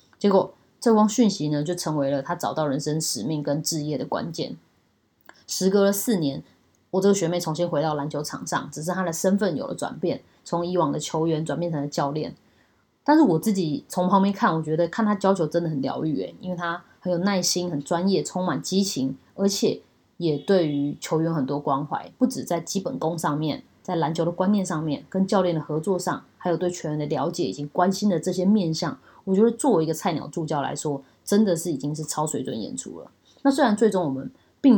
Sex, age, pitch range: female, 20-39, 150-190 Hz